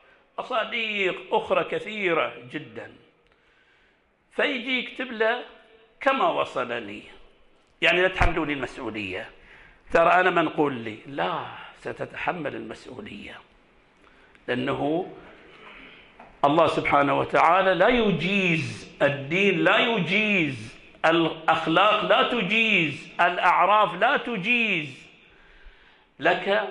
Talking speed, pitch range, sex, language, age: 80 wpm, 160-225 Hz, male, Arabic, 50-69